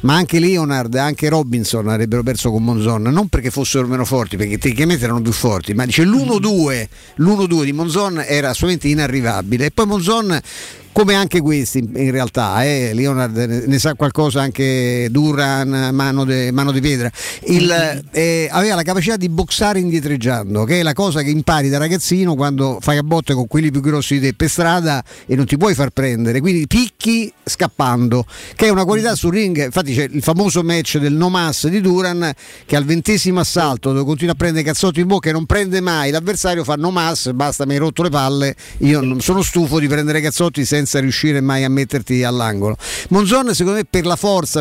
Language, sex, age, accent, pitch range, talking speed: Italian, male, 50-69, native, 130-170 Hz, 195 wpm